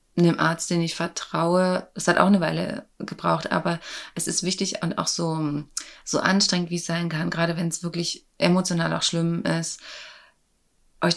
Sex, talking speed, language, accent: female, 175 wpm, German, German